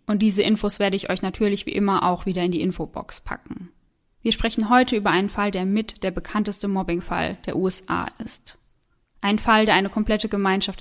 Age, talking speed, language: 10-29, 195 wpm, German